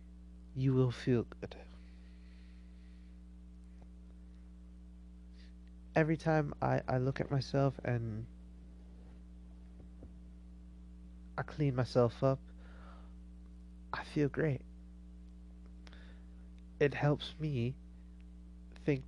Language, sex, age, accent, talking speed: English, male, 20-39, American, 70 wpm